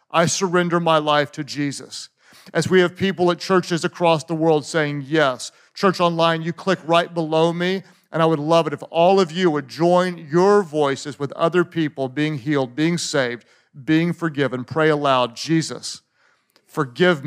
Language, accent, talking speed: English, American, 175 wpm